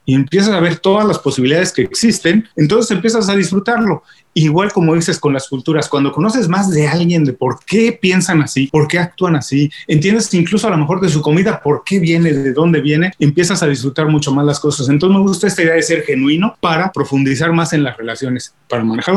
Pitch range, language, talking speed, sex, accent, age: 145-190 Hz, Spanish, 220 wpm, male, Mexican, 30-49